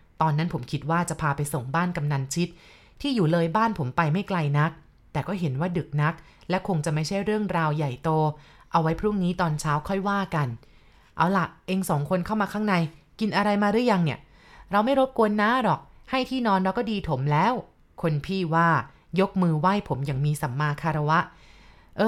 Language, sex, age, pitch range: Thai, female, 20-39, 155-200 Hz